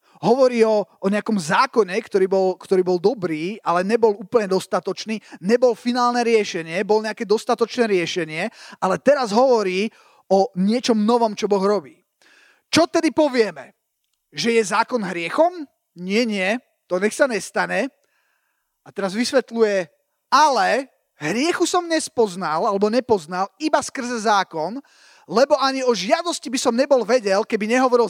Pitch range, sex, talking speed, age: 205-270 Hz, male, 140 wpm, 30-49